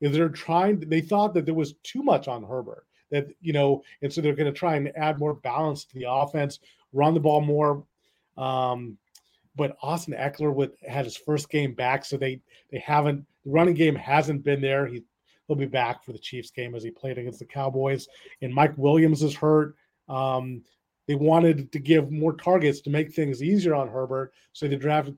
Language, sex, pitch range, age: English, male, 135-160 Hz, 30-49